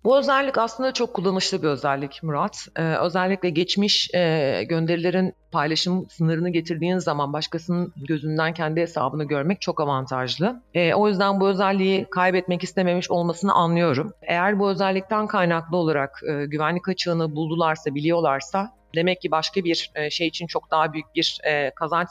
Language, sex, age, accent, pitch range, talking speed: Turkish, female, 40-59, native, 145-185 Hz, 145 wpm